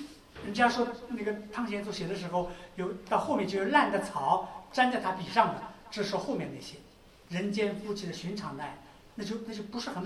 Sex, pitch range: male, 185-235 Hz